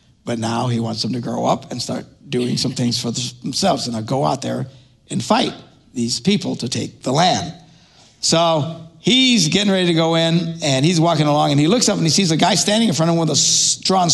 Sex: male